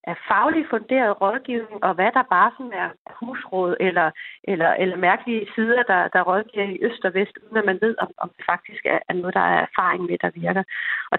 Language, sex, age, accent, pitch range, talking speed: Danish, female, 30-49, native, 195-245 Hz, 215 wpm